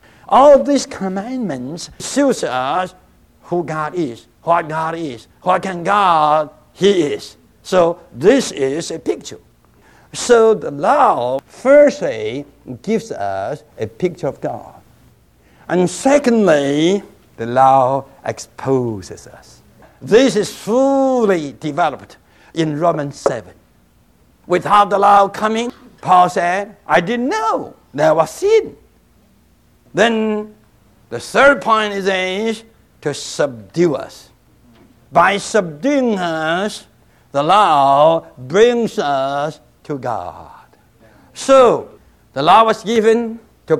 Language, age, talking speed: English, 60-79, 110 wpm